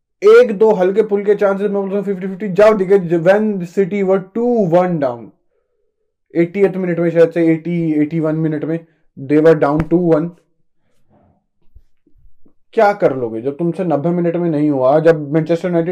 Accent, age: native, 20-39